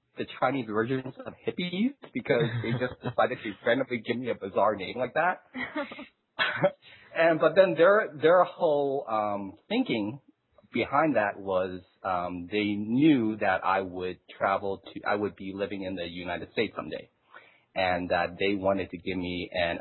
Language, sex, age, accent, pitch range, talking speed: English, male, 30-49, American, 95-135 Hz, 165 wpm